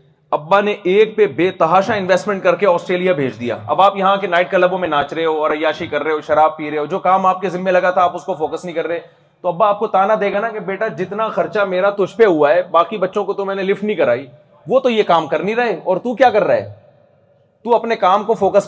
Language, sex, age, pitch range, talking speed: Urdu, male, 30-49, 155-195 Hz, 285 wpm